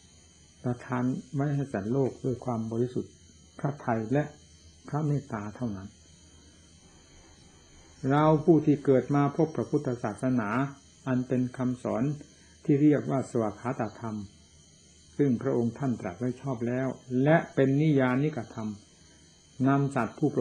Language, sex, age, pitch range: Thai, male, 60-79, 95-140 Hz